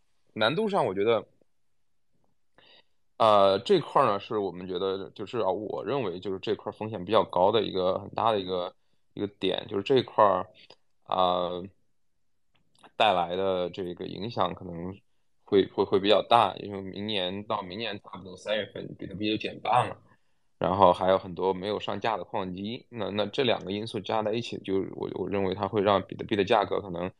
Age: 20-39